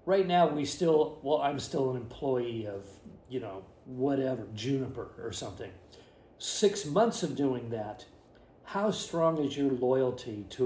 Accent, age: American, 50-69